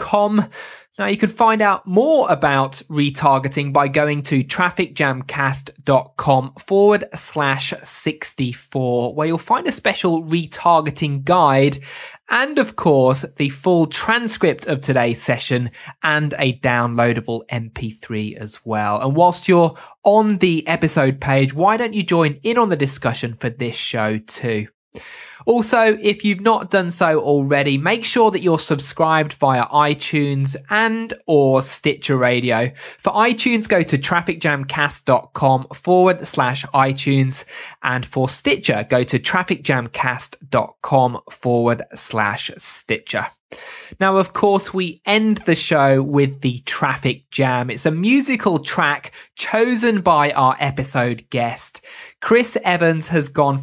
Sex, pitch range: male, 135-190 Hz